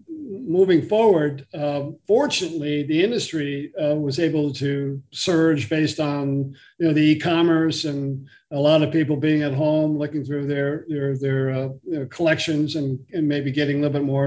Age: 50-69